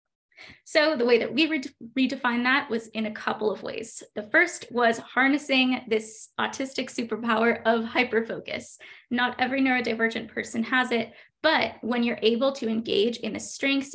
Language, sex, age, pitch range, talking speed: English, female, 20-39, 210-245 Hz, 160 wpm